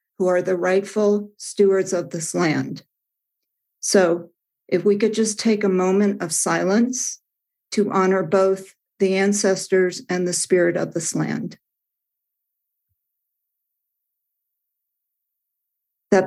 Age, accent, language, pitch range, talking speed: 50-69, American, English, 180-205 Hz, 110 wpm